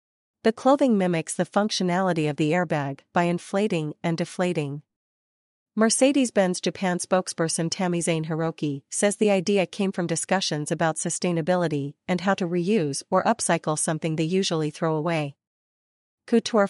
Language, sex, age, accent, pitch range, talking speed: English, female, 40-59, American, 165-195 Hz, 135 wpm